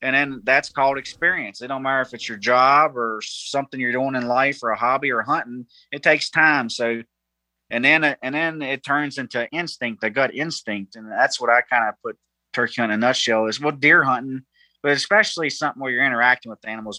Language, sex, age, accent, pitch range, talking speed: English, male, 30-49, American, 115-145 Hz, 215 wpm